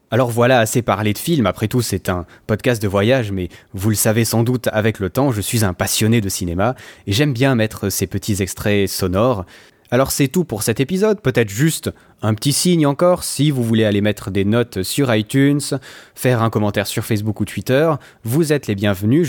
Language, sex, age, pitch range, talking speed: French, male, 20-39, 105-140 Hz, 210 wpm